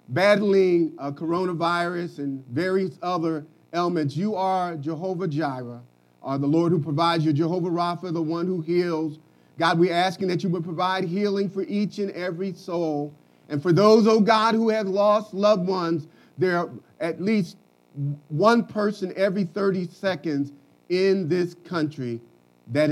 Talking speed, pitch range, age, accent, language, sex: 155 wpm, 140-185 Hz, 40-59, American, English, male